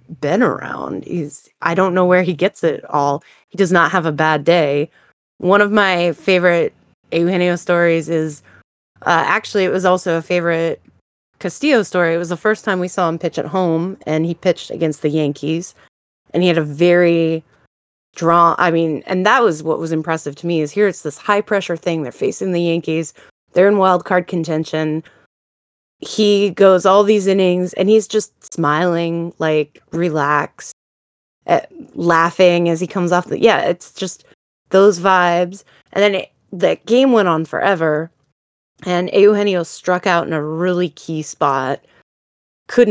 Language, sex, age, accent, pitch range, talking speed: English, female, 20-39, American, 155-185 Hz, 175 wpm